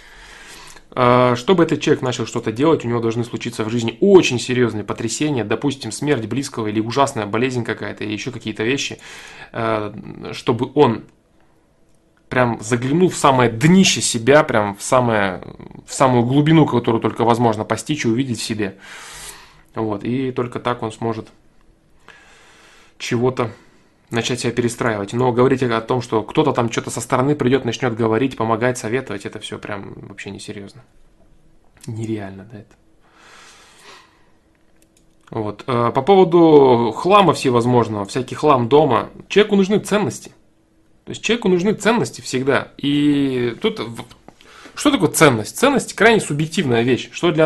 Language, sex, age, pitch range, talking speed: Russian, male, 20-39, 110-145 Hz, 140 wpm